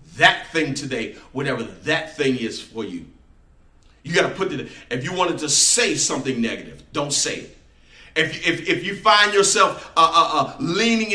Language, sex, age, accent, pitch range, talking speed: English, male, 40-59, American, 160-220 Hz, 180 wpm